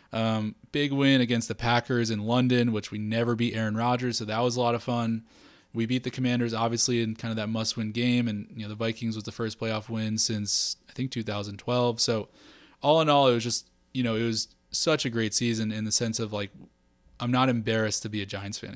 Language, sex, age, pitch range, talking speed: English, male, 20-39, 110-125 Hz, 240 wpm